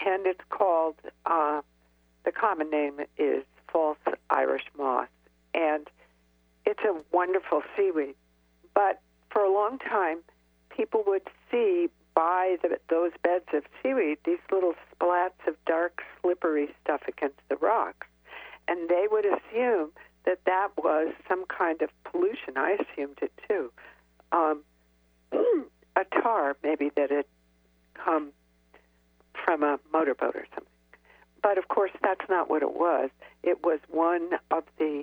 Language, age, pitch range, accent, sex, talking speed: English, 60-79, 140-175 Hz, American, female, 135 wpm